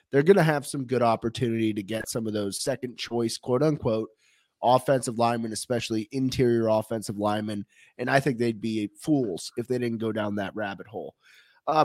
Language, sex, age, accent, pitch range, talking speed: English, male, 30-49, American, 115-160 Hz, 185 wpm